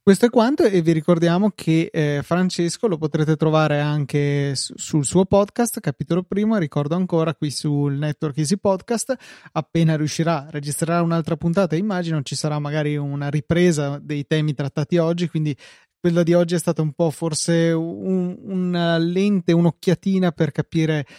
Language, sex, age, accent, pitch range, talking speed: Italian, male, 30-49, native, 150-185 Hz, 155 wpm